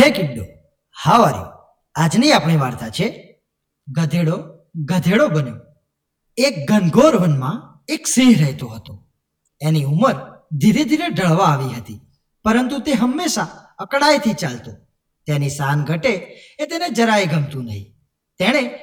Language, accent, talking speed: Gujarati, native, 40 wpm